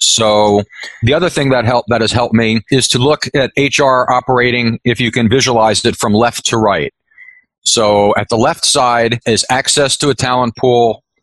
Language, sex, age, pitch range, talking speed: English, male, 40-59, 115-140 Hz, 190 wpm